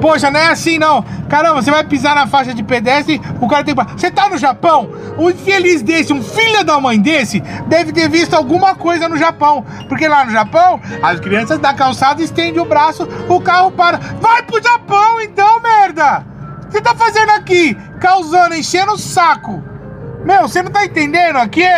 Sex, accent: male, Brazilian